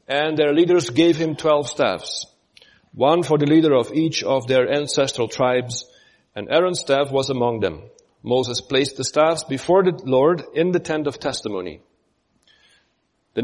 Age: 40-59